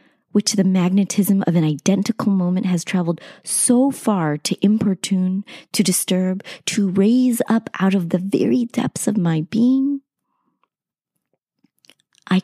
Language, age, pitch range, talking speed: English, 30-49, 180-235 Hz, 130 wpm